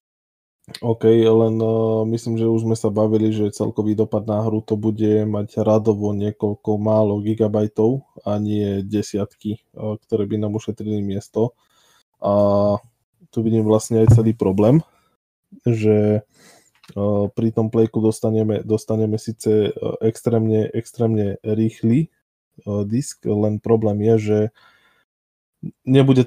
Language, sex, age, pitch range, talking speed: Slovak, male, 20-39, 105-115 Hz, 125 wpm